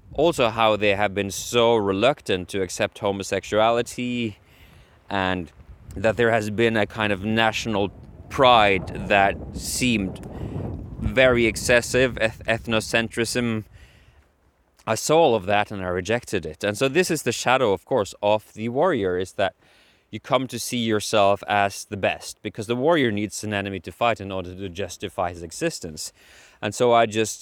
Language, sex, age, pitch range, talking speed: English, male, 20-39, 95-115 Hz, 160 wpm